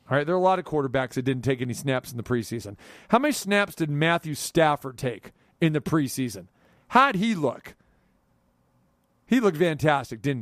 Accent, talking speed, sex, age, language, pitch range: American, 195 wpm, male, 40-59, English, 130-165 Hz